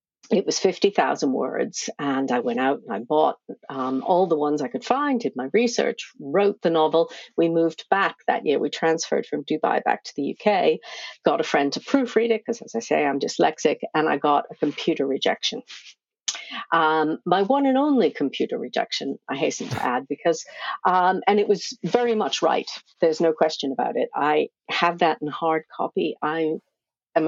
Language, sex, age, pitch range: English, female, 50-69, 150-205 Hz